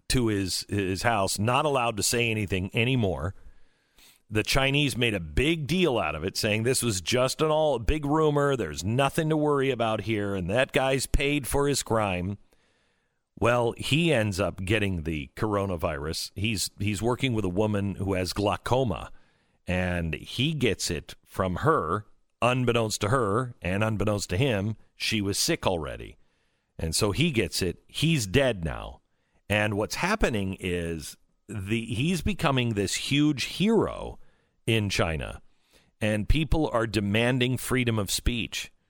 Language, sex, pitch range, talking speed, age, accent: English, male, 100-135 Hz, 155 wpm, 50-69, American